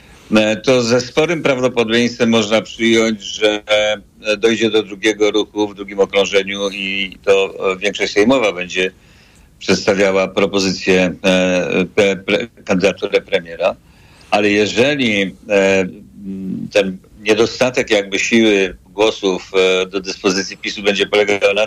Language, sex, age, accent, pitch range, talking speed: Polish, male, 50-69, native, 100-120 Hz, 100 wpm